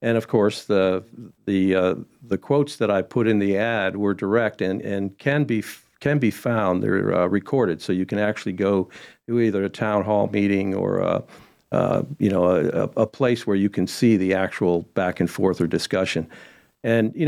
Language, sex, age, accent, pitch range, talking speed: English, male, 50-69, American, 95-115 Hz, 200 wpm